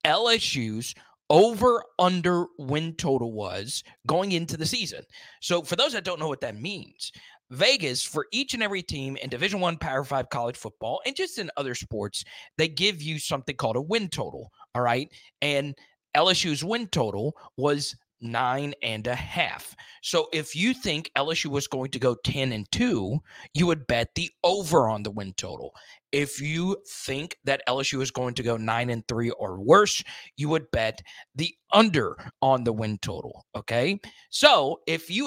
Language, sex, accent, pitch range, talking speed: English, male, American, 125-185 Hz, 175 wpm